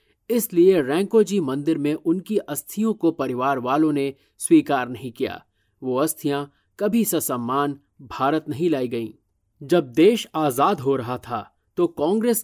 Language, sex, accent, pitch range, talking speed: Hindi, male, native, 130-200 Hz, 145 wpm